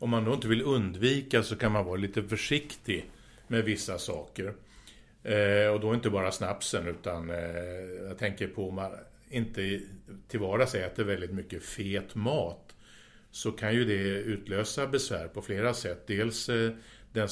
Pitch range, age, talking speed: 95-110 Hz, 60-79, 175 wpm